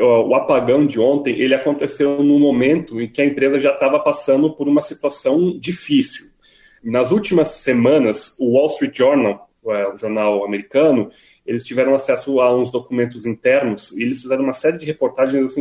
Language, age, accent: Portuguese, 30-49, Brazilian